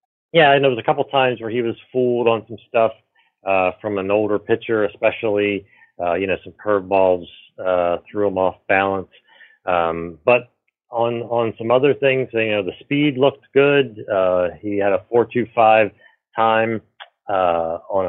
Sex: male